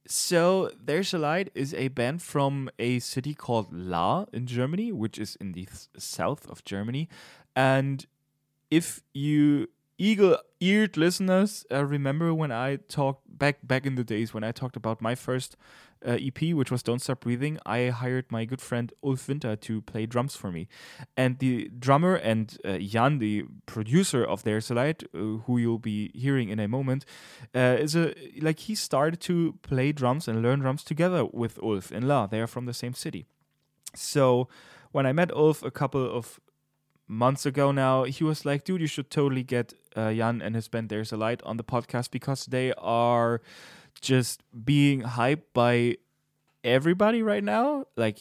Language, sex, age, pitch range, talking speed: English, male, 20-39, 115-145 Hz, 180 wpm